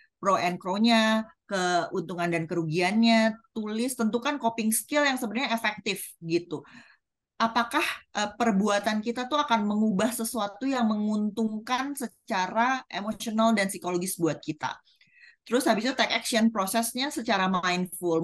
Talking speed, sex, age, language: 120 wpm, female, 30-49, Indonesian